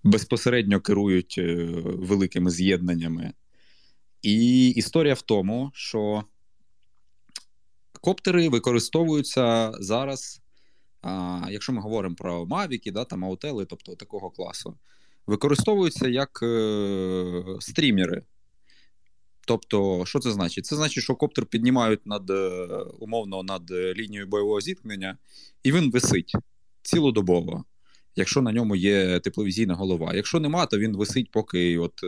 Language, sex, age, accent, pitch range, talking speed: Ukrainian, male, 20-39, native, 95-130 Hz, 110 wpm